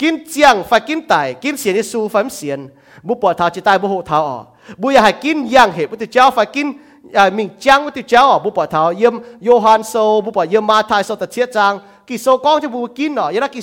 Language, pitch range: English, 195-275 Hz